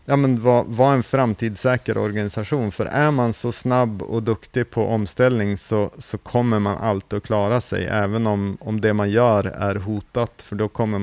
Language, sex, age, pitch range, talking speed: Swedish, male, 30-49, 100-120 Hz, 190 wpm